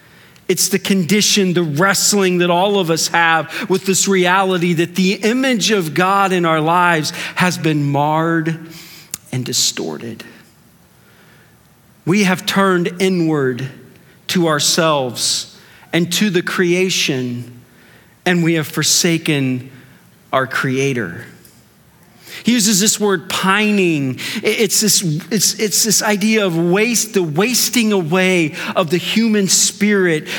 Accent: American